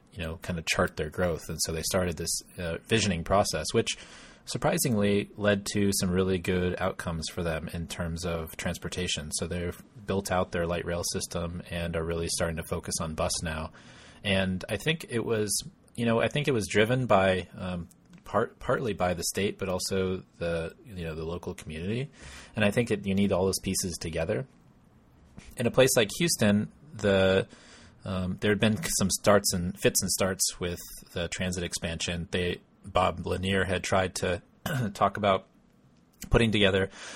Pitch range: 85-100 Hz